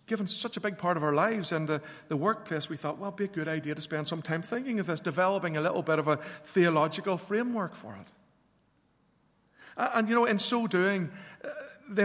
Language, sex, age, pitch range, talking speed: English, male, 50-69, 170-215 Hz, 225 wpm